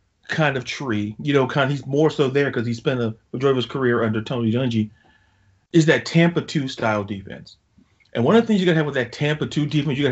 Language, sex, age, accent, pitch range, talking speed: English, male, 40-59, American, 110-150 Hz, 260 wpm